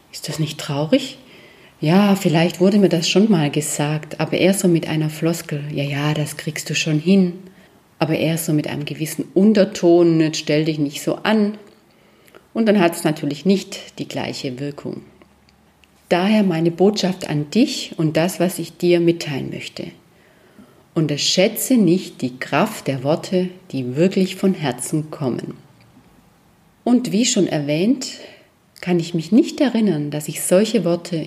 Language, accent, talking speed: German, German, 160 wpm